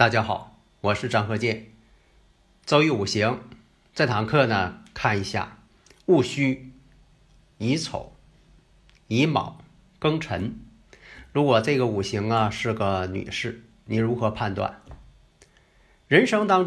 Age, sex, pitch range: 50-69, male, 105-150 Hz